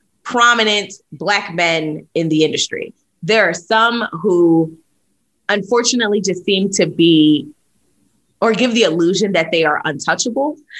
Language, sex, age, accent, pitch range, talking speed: English, female, 20-39, American, 165-240 Hz, 130 wpm